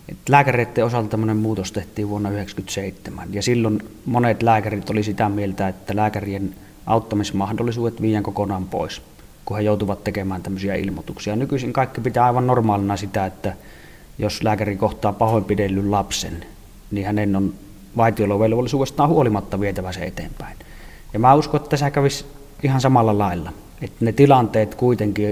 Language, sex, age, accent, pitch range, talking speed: Finnish, male, 20-39, native, 100-115 Hz, 140 wpm